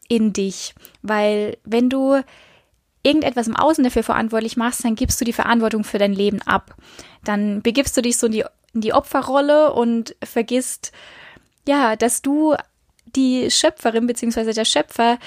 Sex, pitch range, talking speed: female, 220-255 Hz, 155 wpm